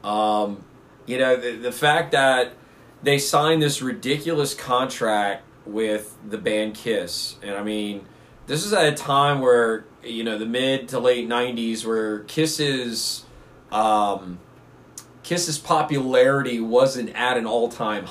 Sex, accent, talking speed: male, American, 135 wpm